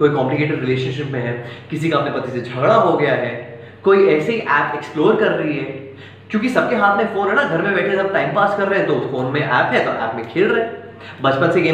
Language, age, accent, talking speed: Hindi, 20-39, native, 160 wpm